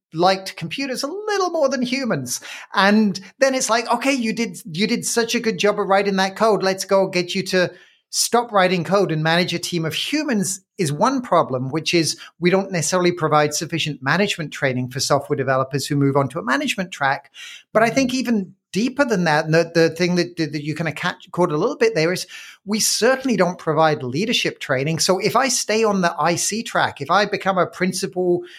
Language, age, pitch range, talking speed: English, 40-59, 155-200 Hz, 210 wpm